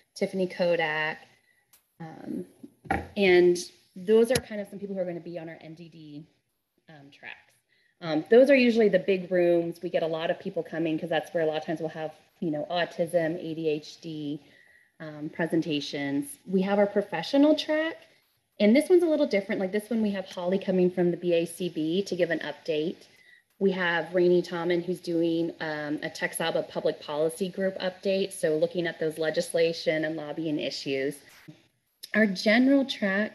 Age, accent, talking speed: 30-49, American, 175 wpm